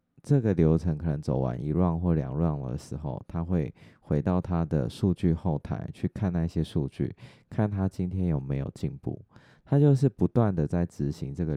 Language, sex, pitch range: Chinese, male, 80-100 Hz